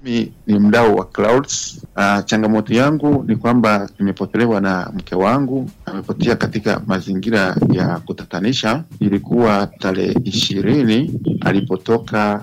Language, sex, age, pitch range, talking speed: English, male, 50-69, 100-120 Hz, 105 wpm